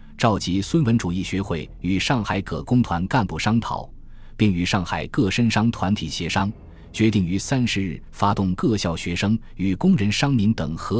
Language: Chinese